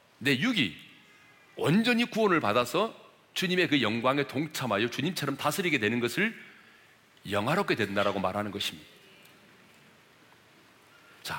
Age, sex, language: 40-59, male, Korean